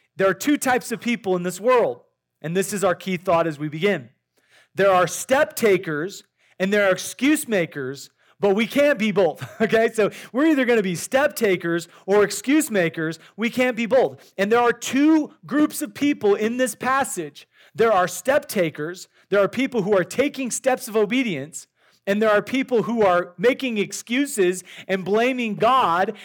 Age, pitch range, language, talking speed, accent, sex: 40-59, 185-245 Hz, English, 185 wpm, American, male